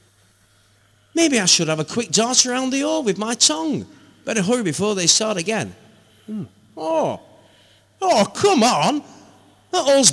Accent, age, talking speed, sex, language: British, 30-49, 155 wpm, male, English